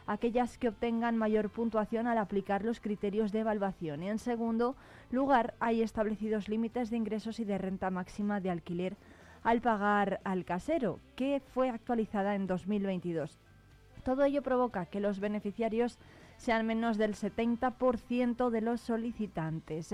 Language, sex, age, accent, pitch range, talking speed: Spanish, female, 20-39, Spanish, 190-230 Hz, 145 wpm